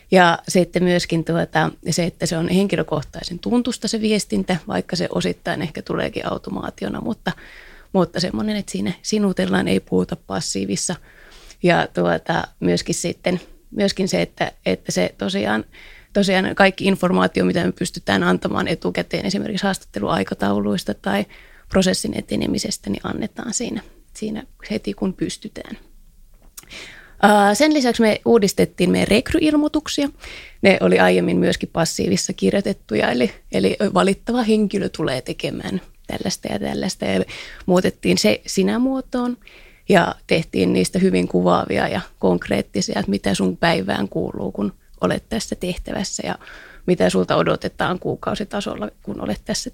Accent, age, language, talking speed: native, 20-39, Finnish, 130 wpm